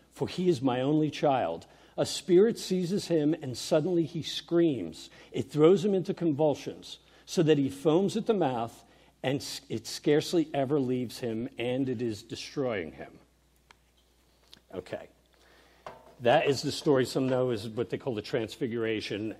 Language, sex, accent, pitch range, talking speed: English, male, American, 110-150 Hz, 155 wpm